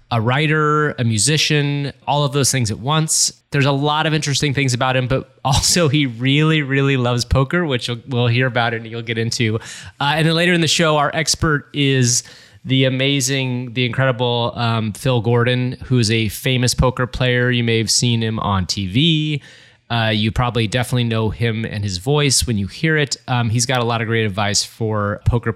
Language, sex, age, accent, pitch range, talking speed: English, male, 20-39, American, 115-150 Hz, 200 wpm